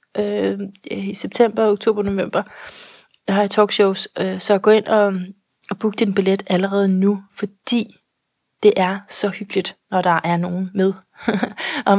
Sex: female